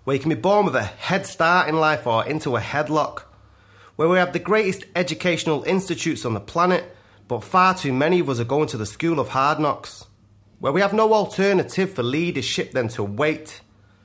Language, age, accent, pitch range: English, 30-49, British, 120-180 Hz